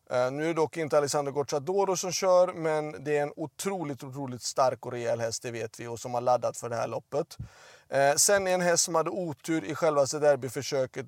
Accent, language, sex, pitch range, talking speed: native, Swedish, male, 140-180 Hz, 215 wpm